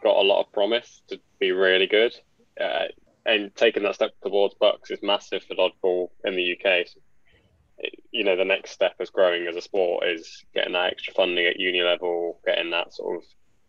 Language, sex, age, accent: English, male, 10-29, British